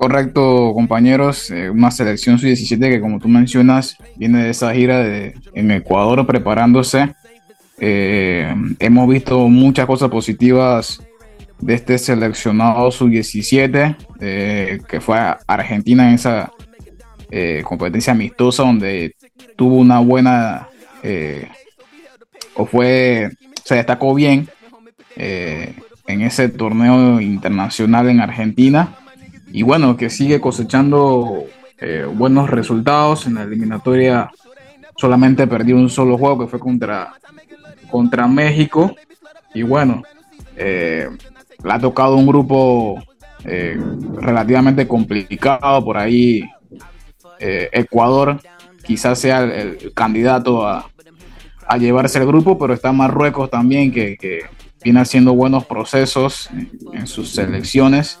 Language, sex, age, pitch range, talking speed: Spanish, male, 20-39, 115-135 Hz, 120 wpm